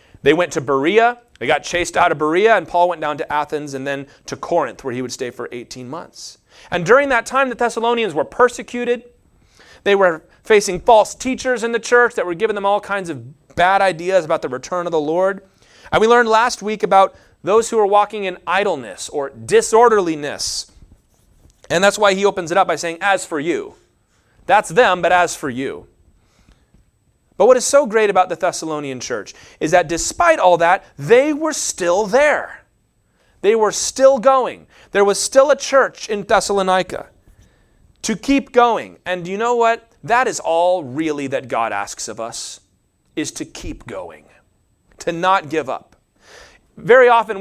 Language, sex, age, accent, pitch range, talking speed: English, male, 30-49, American, 165-240 Hz, 185 wpm